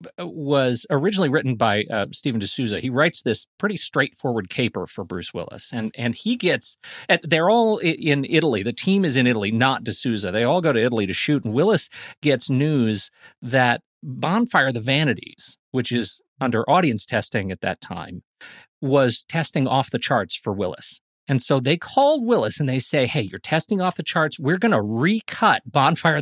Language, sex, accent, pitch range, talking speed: English, male, American, 120-165 Hz, 185 wpm